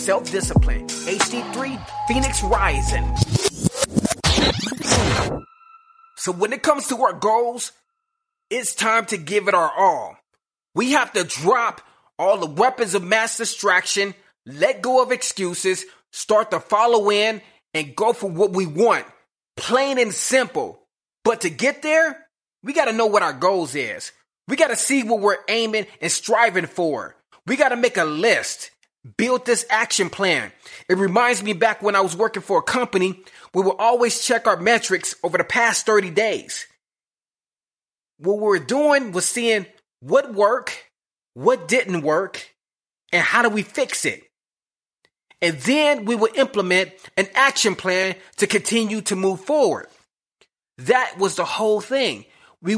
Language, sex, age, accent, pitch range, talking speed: English, male, 30-49, American, 190-245 Hz, 150 wpm